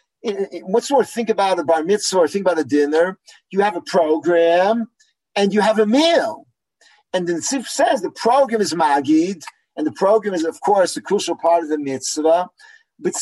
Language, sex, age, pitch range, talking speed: English, male, 50-69, 170-250 Hz, 200 wpm